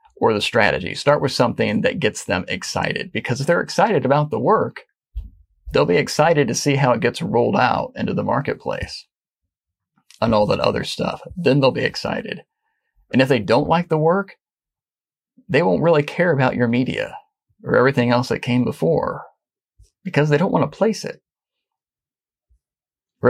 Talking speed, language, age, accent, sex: 175 wpm, English, 40-59, American, male